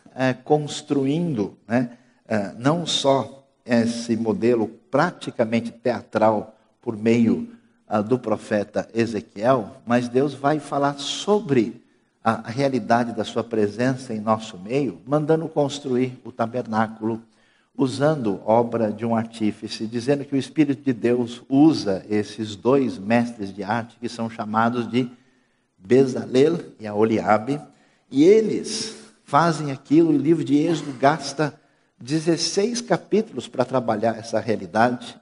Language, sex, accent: Portuguese, male, Brazilian